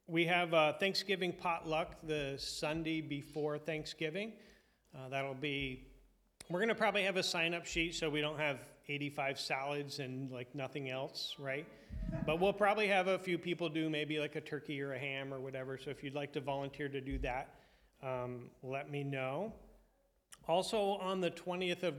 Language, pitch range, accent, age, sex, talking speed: English, 140-165 Hz, American, 40-59, male, 180 wpm